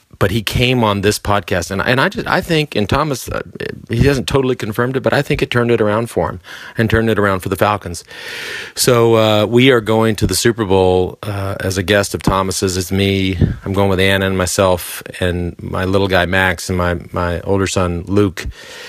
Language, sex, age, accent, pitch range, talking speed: English, male, 40-59, American, 90-115 Hz, 220 wpm